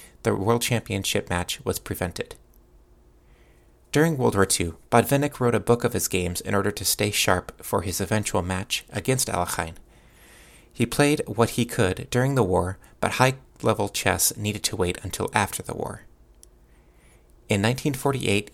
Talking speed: 155 wpm